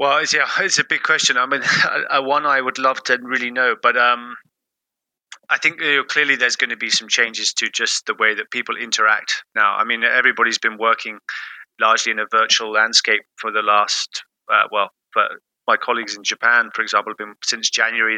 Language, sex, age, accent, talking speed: English, male, 30-49, British, 210 wpm